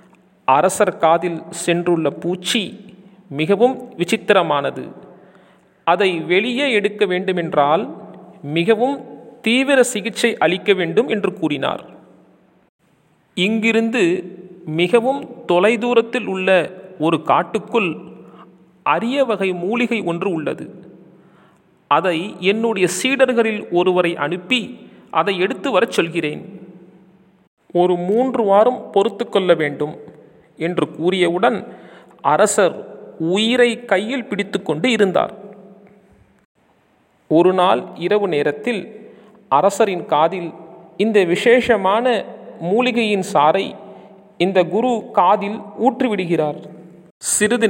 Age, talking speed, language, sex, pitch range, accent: 40-59, 80 wpm, Tamil, male, 170-220 Hz, native